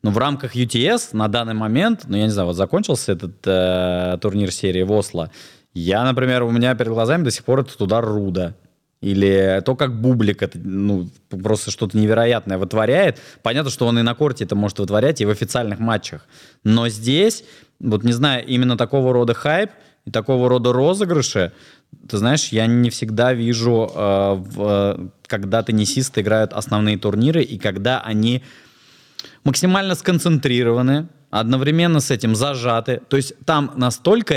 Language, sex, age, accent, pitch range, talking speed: Russian, male, 20-39, native, 110-150 Hz, 160 wpm